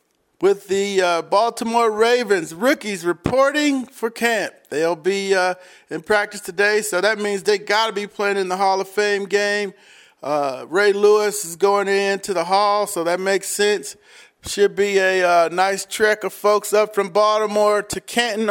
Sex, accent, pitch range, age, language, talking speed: male, American, 185-215 Hz, 40-59, English, 175 wpm